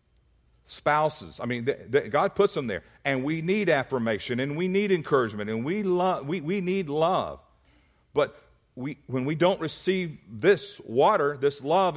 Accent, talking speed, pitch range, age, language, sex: American, 170 wpm, 140-180 Hz, 50-69, English, male